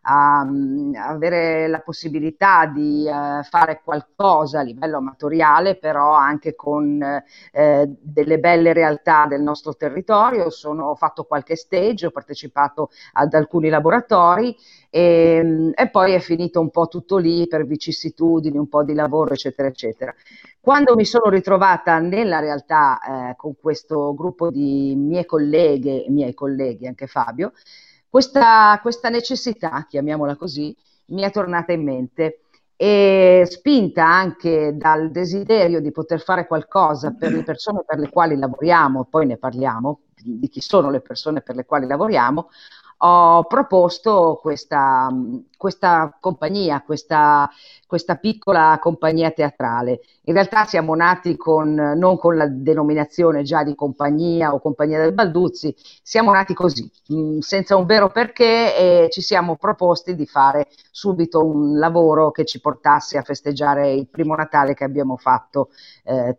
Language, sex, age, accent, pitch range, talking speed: Italian, female, 40-59, native, 145-180 Hz, 140 wpm